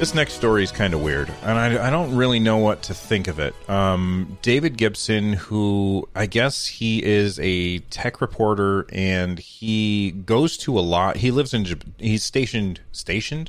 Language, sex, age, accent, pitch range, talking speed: English, male, 30-49, American, 90-115 Hz, 180 wpm